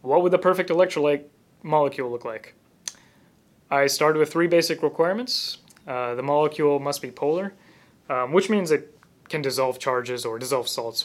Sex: male